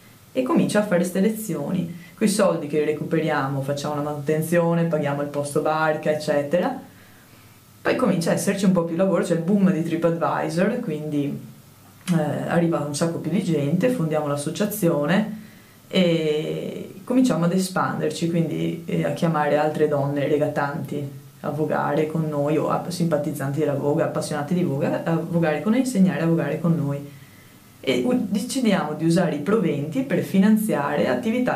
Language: Italian